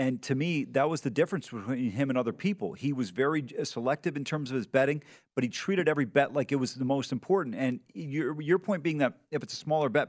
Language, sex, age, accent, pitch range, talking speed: English, male, 40-59, American, 130-165 Hz, 255 wpm